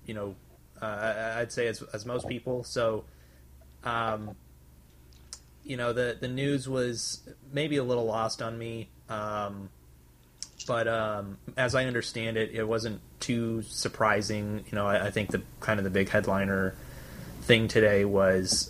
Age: 30-49